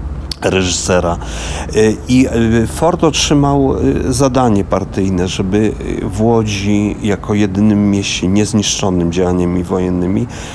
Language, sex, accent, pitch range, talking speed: Polish, male, native, 100-130 Hz, 85 wpm